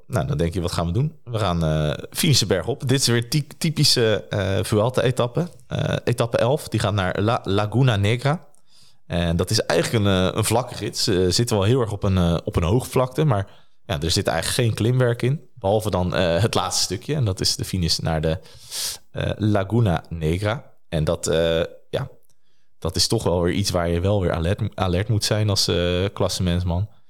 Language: Dutch